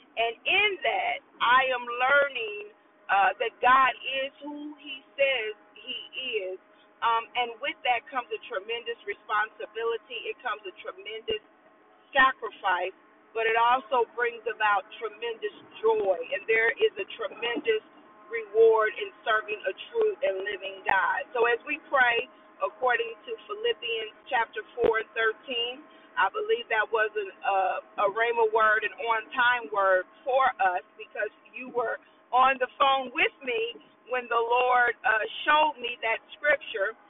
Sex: female